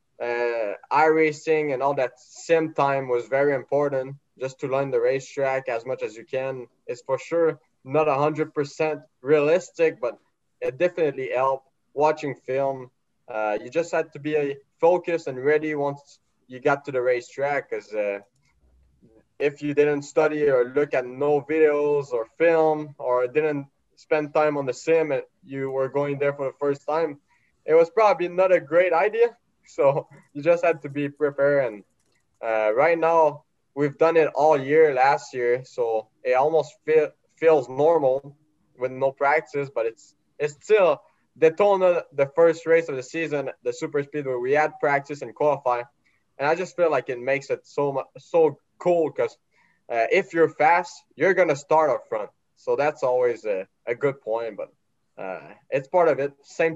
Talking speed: 180 wpm